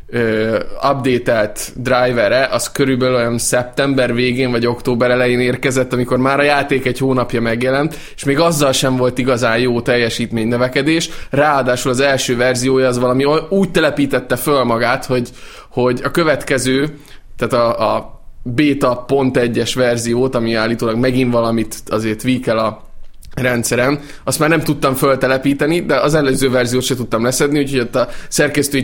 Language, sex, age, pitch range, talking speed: Hungarian, male, 20-39, 120-135 Hz, 145 wpm